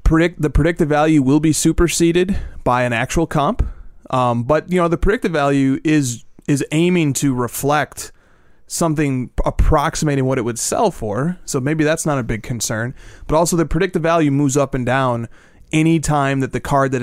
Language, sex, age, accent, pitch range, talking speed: English, male, 30-49, American, 120-150 Hz, 185 wpm